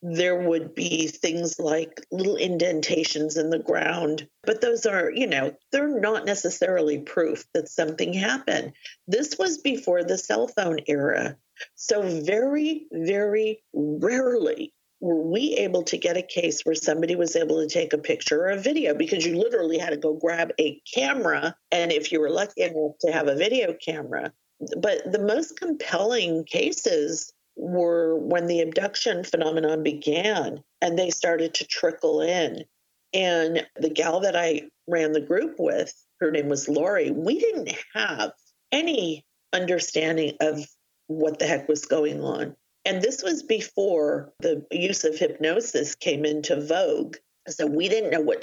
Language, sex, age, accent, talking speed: English, female, 50-69, American, 160 wpm